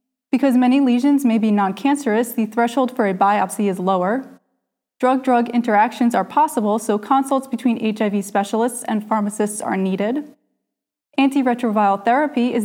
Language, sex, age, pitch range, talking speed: English, female, 20-39, 215-260 Hz, 140 wpm